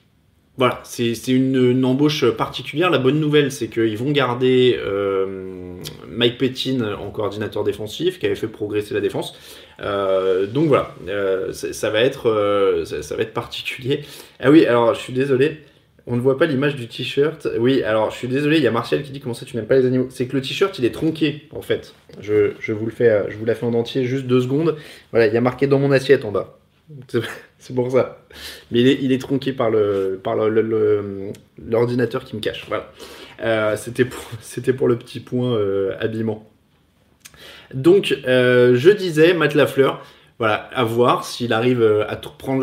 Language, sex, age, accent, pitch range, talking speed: French, male, 20-39, French, 115-155 Hz, 205 wpm